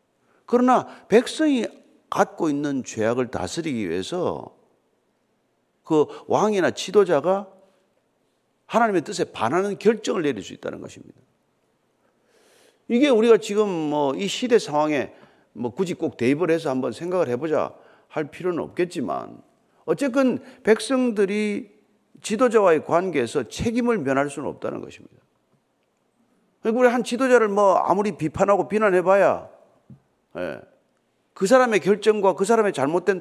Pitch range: 175-245 Hz